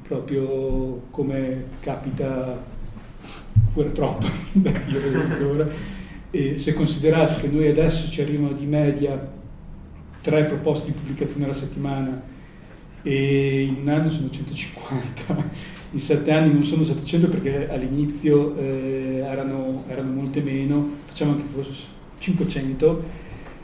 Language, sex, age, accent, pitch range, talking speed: Italian, male, 40-59, native, 135-155 Hz, 105 wpm